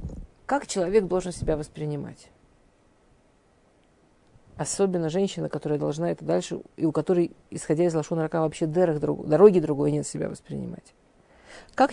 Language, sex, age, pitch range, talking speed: Russian, female, 50-69, 155-190 Hz, 135 wpm